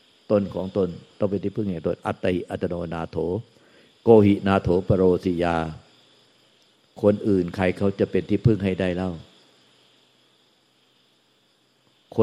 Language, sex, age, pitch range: Thai, male, 60-79, 95-115 Hz